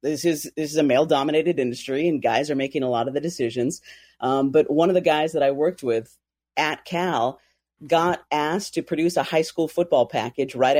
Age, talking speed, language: 40-59, 210 wpm, English